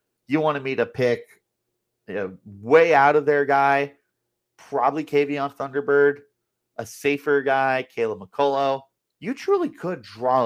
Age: 30-49